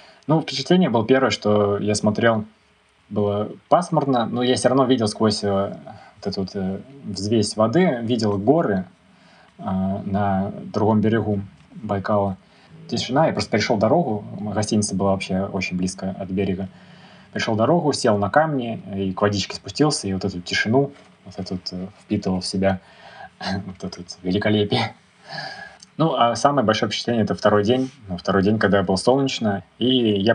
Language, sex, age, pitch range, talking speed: Russian, male, 20-39, 95-110 Hz, 150 wpm